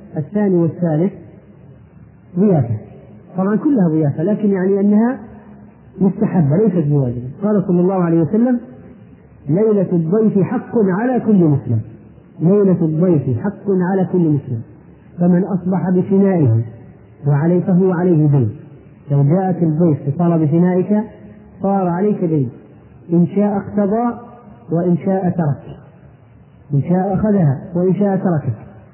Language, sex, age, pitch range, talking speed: Arabic, male, 40-59, 160-195 Hz, 115 wpm